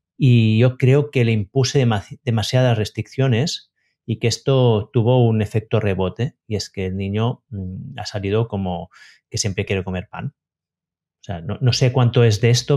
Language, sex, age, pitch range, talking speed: Spanish, male, 30-49, 100-130 Hz, 175 wpm